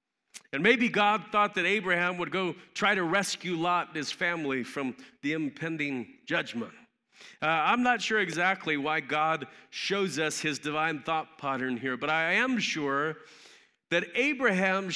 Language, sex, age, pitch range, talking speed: English, male, 40-59, 165-220 Hz, 155 wpm